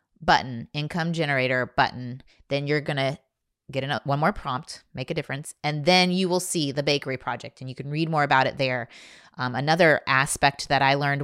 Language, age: English, 20-39